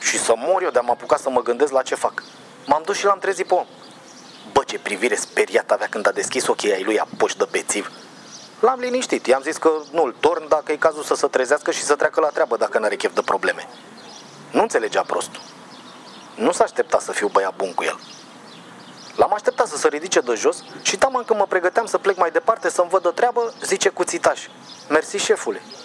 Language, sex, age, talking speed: Romanian, male, 30-49, 220 wpm